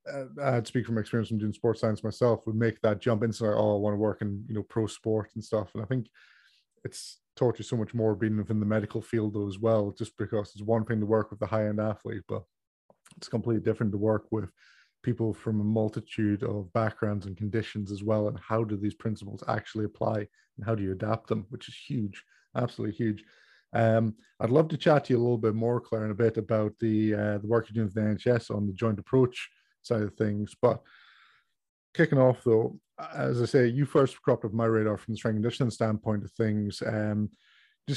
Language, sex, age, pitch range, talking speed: English, male, 20-39, 105-120 Hz, 230 wpm